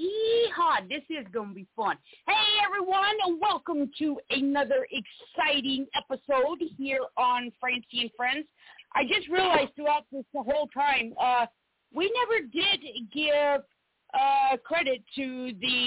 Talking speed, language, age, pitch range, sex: 135 wpm, English, 40-59, 235-305 Hz, female